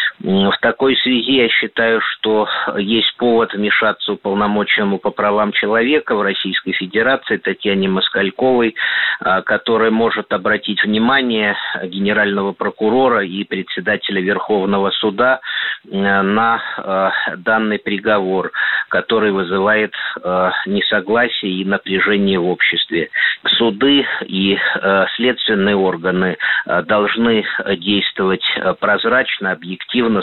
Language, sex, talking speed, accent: Russian, male, 100 wpm, native